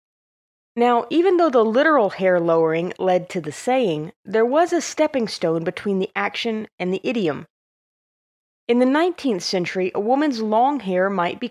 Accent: American